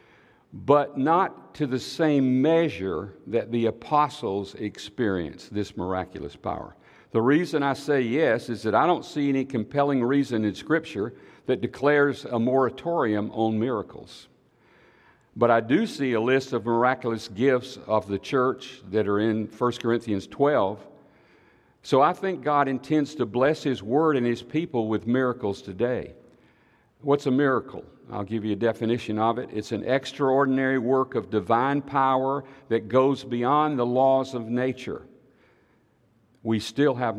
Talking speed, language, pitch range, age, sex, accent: 150 wpm, English, 115-140 Hz, 60-79, male, American